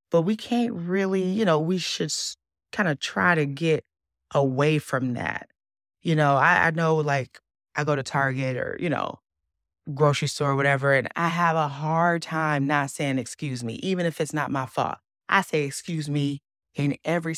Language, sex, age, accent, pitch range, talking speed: English, female, 20-39, American, 140-195 Hz, 190 wpm